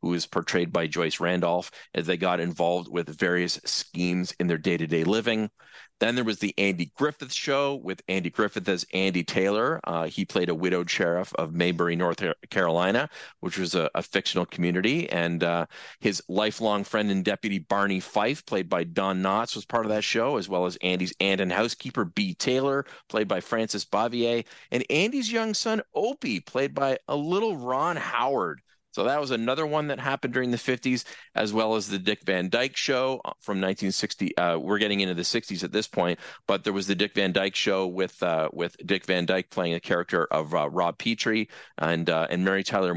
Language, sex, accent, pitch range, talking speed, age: English, male, American, 90-115 Hz, 200 wpm, 40-59